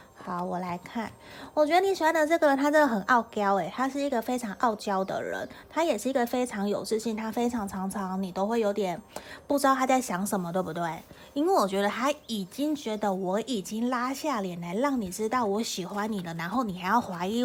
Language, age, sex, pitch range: Chinese, 20-39, female, 180-235 Hz